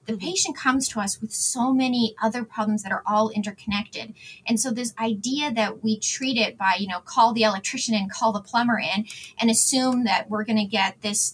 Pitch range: 200-235 Hz